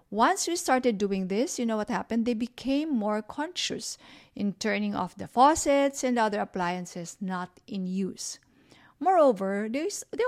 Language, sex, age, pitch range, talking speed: English, female, 50-69, 190-250 Hz, 150 wpm